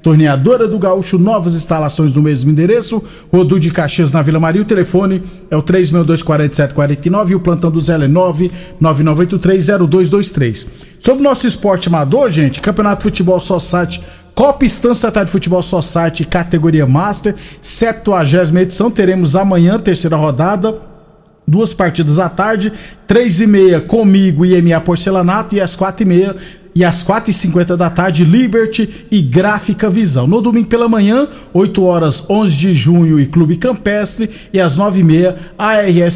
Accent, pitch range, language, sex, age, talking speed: Brazilian, 165-210 Hz, Portuguese, male, 50-69, 155 wpm